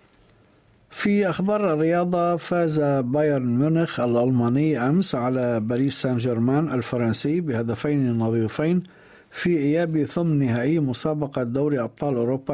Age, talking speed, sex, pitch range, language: 60-79, 110 wpm, male, 120-155 Hz, Arabic